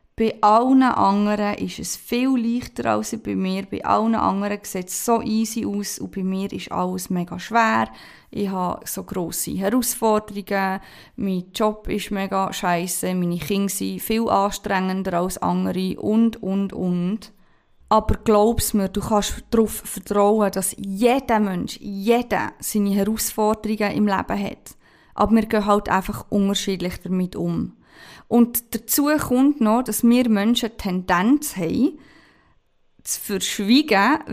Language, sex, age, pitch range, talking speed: German, female, 20-39, 190-225 Hz, 140 wpm